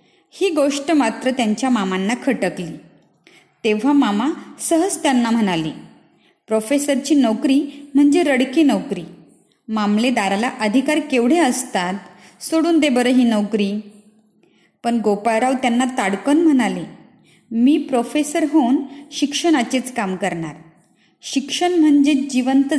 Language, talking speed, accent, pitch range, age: Marathi, 105 wpm, native, 215-280 Hz, 20-39